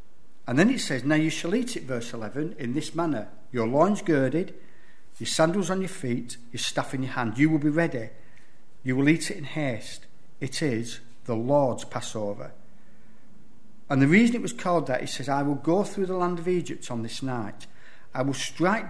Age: 50-69